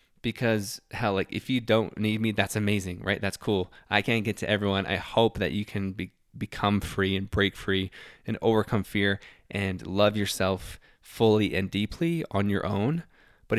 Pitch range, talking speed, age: 100-120 Hz, 185 wpm, 20-39